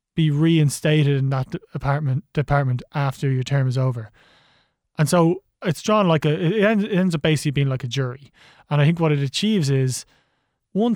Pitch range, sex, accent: 140-170 Hz, male, Irish